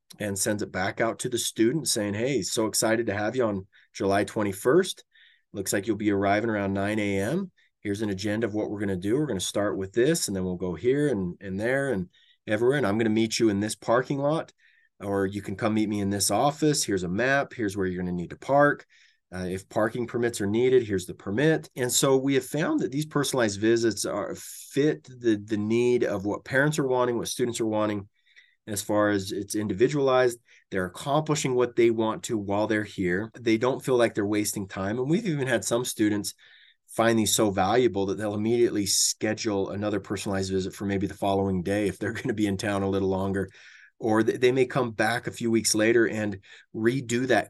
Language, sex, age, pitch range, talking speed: English, male, 30-49, 100-125 Hz, 225 wpm